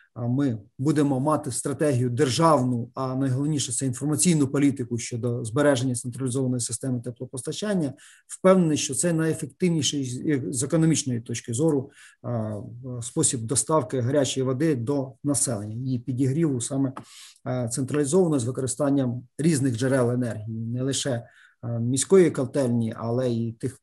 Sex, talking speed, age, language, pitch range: male, 115 wpm, 40-59, Ukrainian, 125-150 Hz